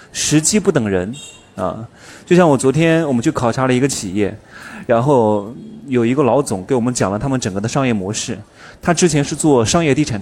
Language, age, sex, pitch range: Chinese, 20-39, male, 115-160 Hz